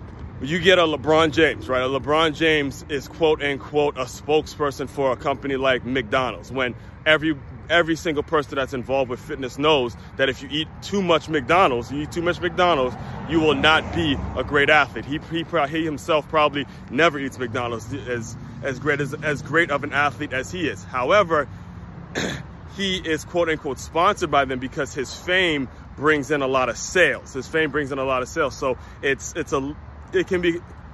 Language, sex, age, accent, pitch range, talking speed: English, male, 30-49, American, 130-155 Hz, 195 wpm